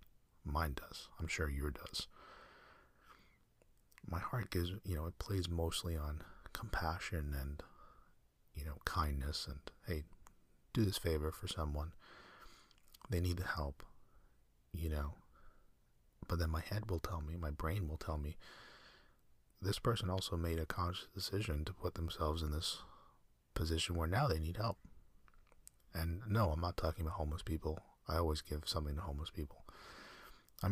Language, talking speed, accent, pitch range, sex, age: English, 155 wpm, American, 75-90 Hz, male, 30-49